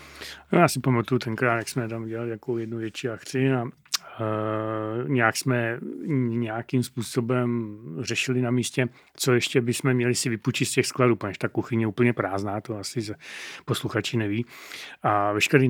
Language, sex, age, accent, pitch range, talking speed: Czech, male, 40-59, native, 110-125 Hz, 160 wpm